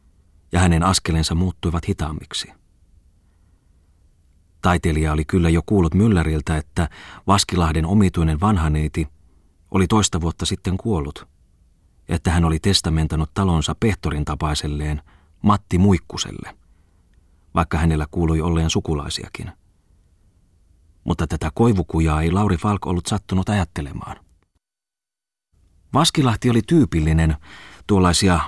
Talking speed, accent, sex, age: 100 wpm, native, male, 30-49